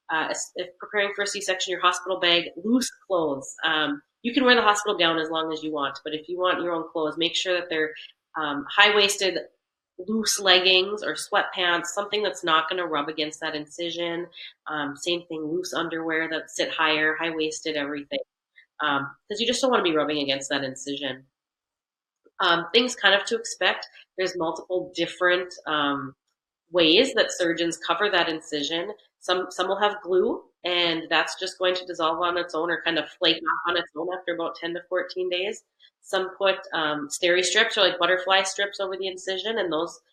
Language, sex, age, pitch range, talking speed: English, female, 30-49, 160-185 Hz, 190 wpm